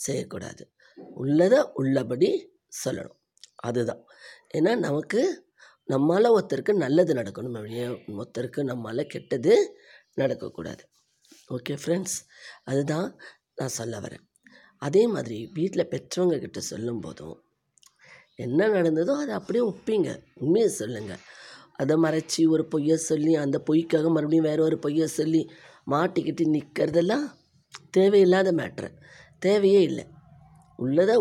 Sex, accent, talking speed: female, native, 100 wpm